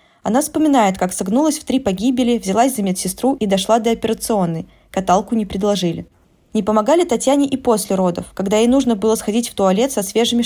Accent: native